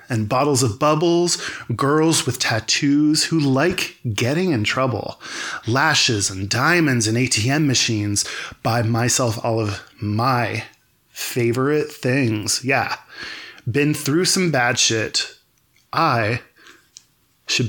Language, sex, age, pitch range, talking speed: English, male, 20-39, 115-155 Hz, 110 wpm